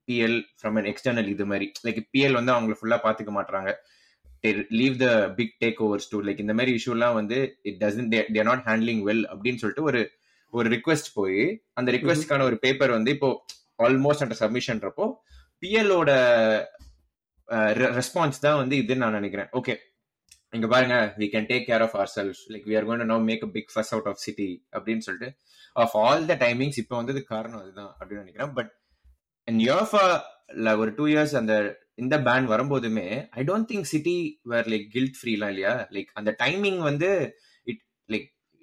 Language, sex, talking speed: Tamil, male, 95 wpm